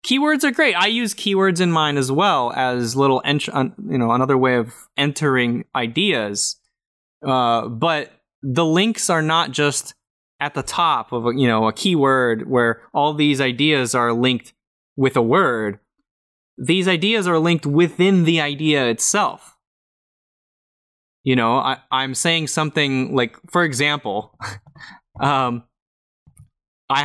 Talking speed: 135 wpm